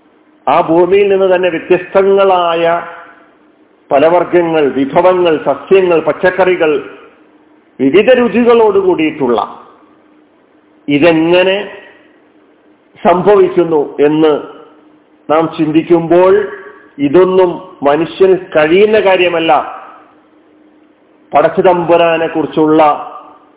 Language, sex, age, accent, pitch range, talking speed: Malayalam, male, 50-69, native, 150-195 Hz, 55 wpm